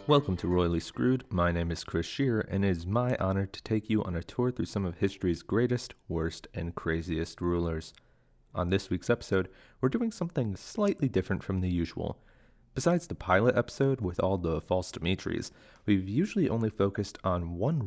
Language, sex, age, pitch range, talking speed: English, male, 30-49, 90-115 Hz, 190 wpm